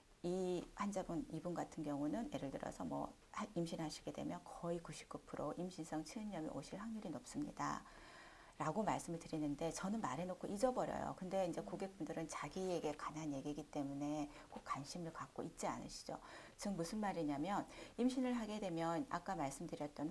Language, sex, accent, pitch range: Korean, female, native, 155-230 Hz